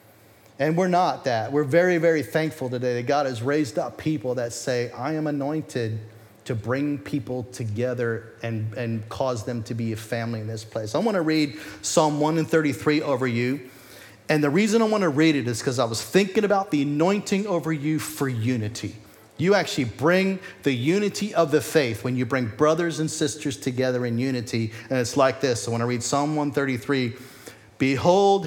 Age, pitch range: 40-59, 125-165 Hz